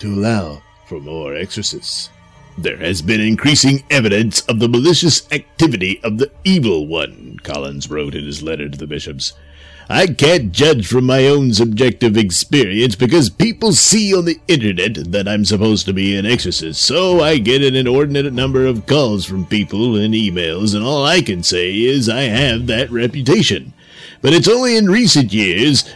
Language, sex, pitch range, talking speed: English, male, 95-150 Hz, 175 wpm